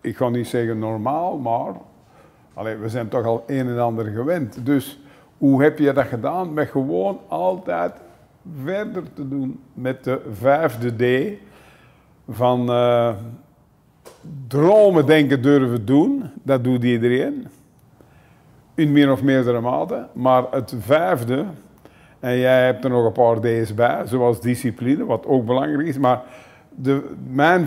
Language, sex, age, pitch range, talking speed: Dutch, male, 50-69, 125-145 Hz, 145 wpm